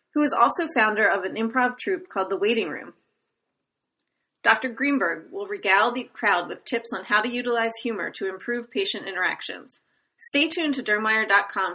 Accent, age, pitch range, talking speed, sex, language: American, 30-49, 195-250 Hz, 170 wpm, female, English